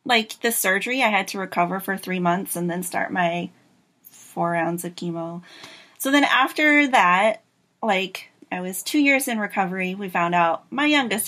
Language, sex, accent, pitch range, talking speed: English, female, American, 175-225 Hz, 180 wpm